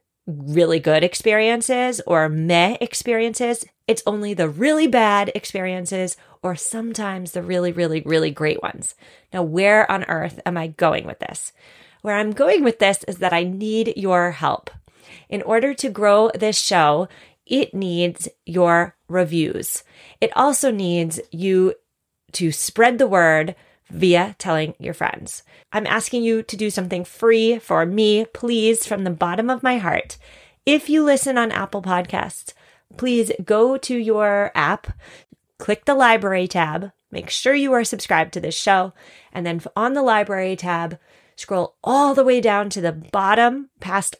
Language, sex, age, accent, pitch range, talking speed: English, female, 30-49, American, 180-230 Hz, 155 wpm